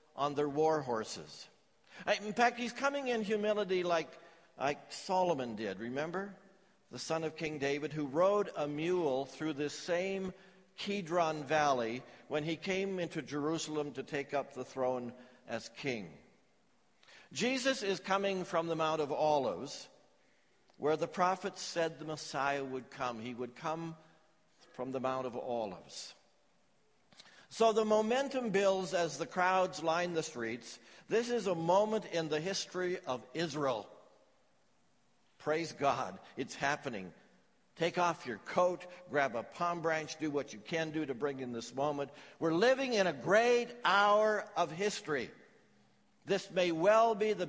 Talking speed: 150 wpm